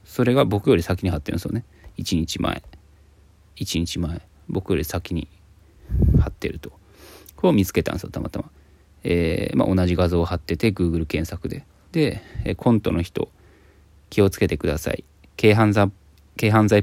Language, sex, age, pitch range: Japanese, male, 20-39, 80-100 Hz